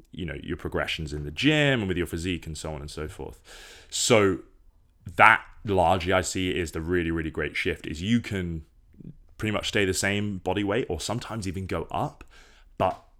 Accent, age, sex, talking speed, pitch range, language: British, 20-39, male, 200 wpm, 80-100 Hz, English